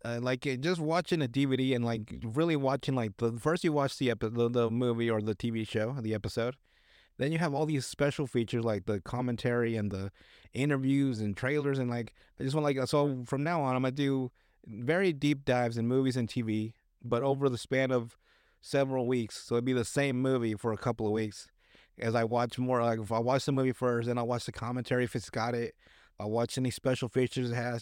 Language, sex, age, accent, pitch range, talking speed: English, male, 30-49, American, 115-140 Hz, 235 wpm